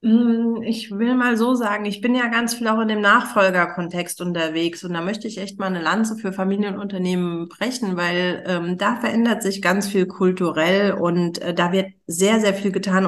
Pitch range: 180-210 Hz